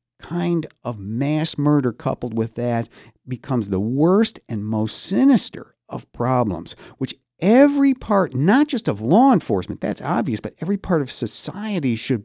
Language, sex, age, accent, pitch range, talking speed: English, male, 50-69, American, 115-160 Hz, 150 wpm